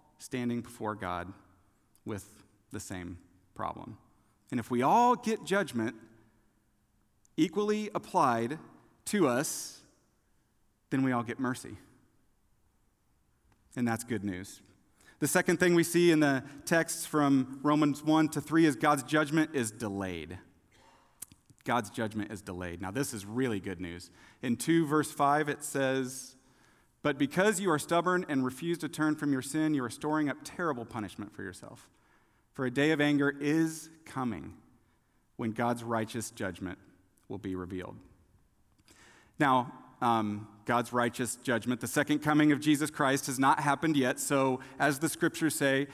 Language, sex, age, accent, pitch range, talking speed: English, male, 40-59, American, 110-150 Hz, 150 wpm